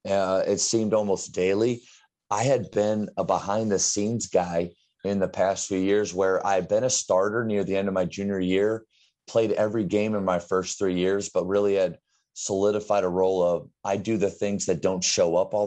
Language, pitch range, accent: English, 95-110 Hz, American